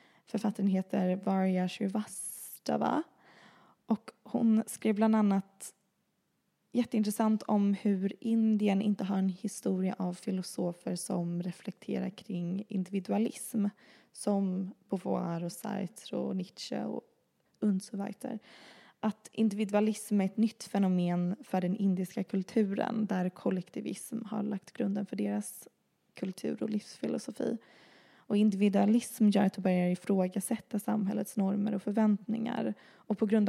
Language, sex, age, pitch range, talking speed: Swedish, female, 20-39, 190-220 Hz, 120 wpm